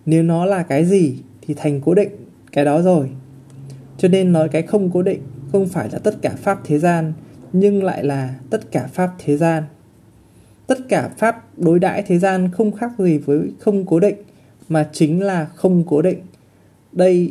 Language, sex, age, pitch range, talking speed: Vietnamese, male, 20-39, 140-190 Hz, 195 wpm